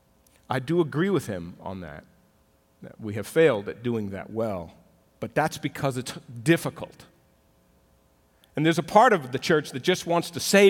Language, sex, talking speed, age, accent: English, male, 180 wpm, 40-59, American